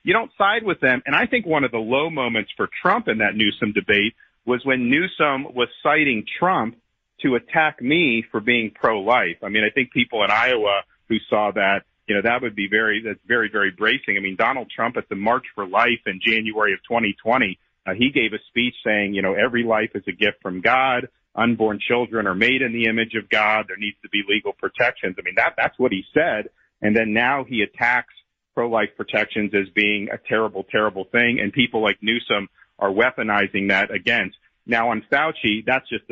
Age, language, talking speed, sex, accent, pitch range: 40-59, English, 210 wpm, male, American, 105-115 Hz